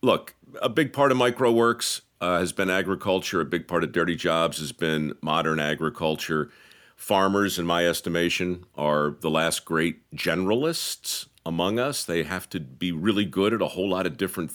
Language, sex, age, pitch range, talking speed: English, male, 50-69, 85-115 Hz, 175 wpm